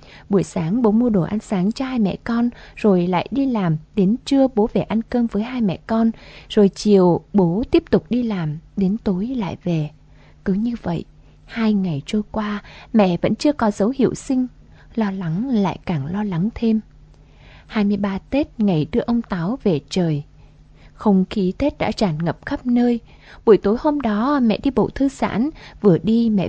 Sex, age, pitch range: female, 20-39, 180-230 Hz